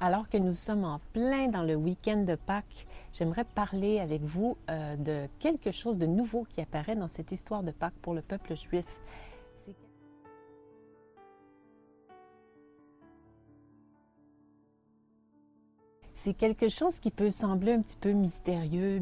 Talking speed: 135 wpm